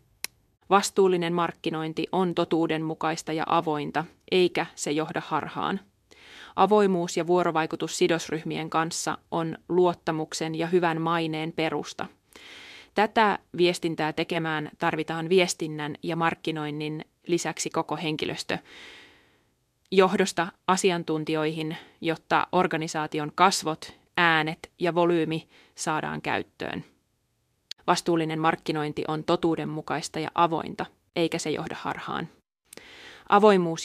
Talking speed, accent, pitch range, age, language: 90 wpm, native, 160-180 Hz, 30-49, Finnish